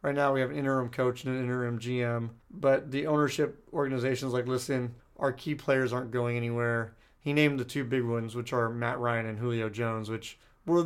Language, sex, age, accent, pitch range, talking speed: English, male, 30-49, American, 120-140 Hz, 215 wpm